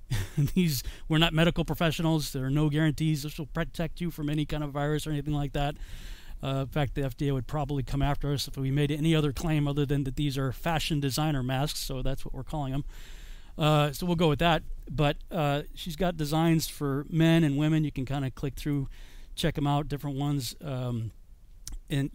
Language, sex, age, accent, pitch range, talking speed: English, male, 40-59, American, 135-160 Hz, 215 wpm